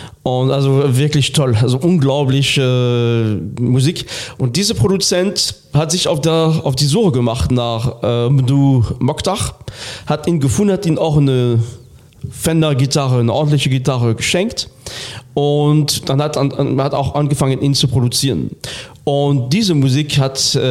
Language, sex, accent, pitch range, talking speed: German, male, German, 125-155 Hz, 140 wpm